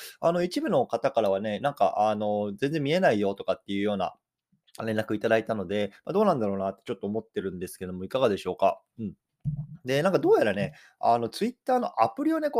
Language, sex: Japanese, male